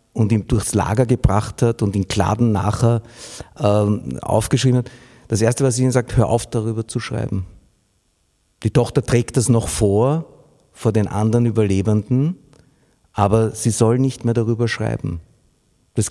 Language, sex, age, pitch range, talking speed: German, male, 50-69, 100-120 Hz, 155 wpm